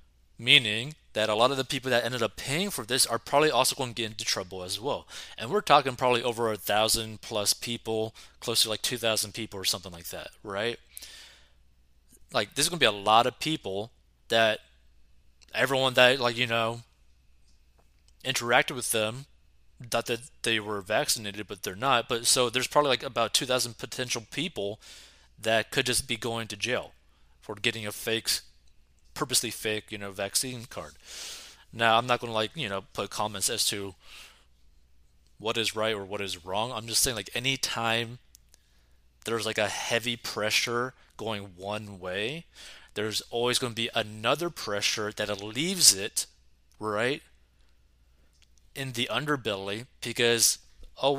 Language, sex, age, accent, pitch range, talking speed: English, male, 20-39, American, 90-125 Hz, 165 wpm